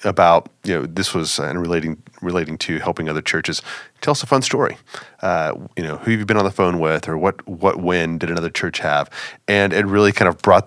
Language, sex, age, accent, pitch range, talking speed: English, male, 30-49, American, 80-100 Hz, 230 wpm